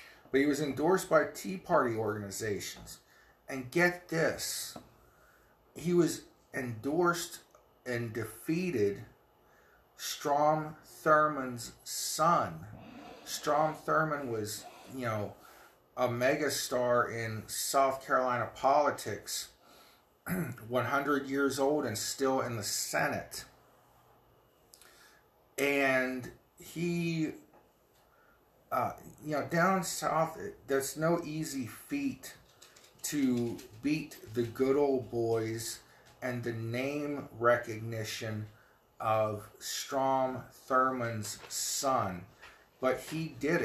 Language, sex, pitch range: English, male, 115-145 Hz